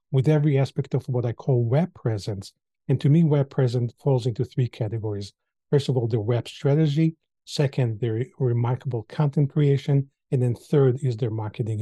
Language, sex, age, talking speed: English, male, 40-59, 180 wpm